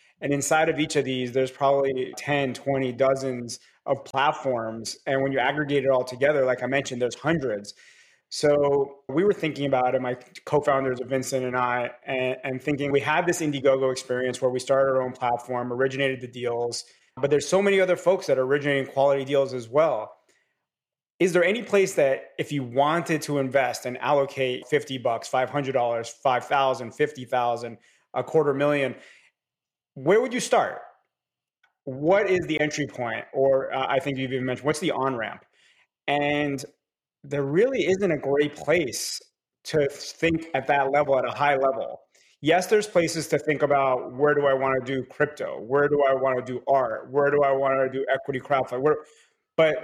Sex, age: male, 30-49